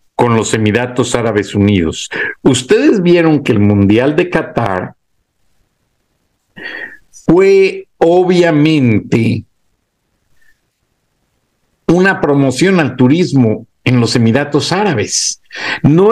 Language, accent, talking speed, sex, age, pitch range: Spanish, Mexican, 85 wpm, male, 50-69, 115-160 Hz